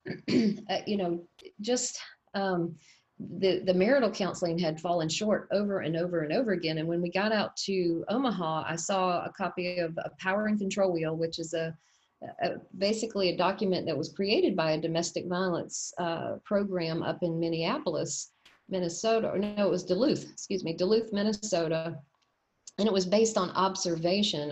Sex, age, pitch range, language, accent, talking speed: female, 40-59, 165-205 Hz, English, American, 170 wpm